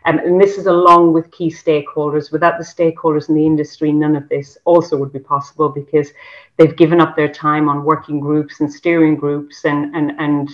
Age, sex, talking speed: 40-59, female, 200 wpm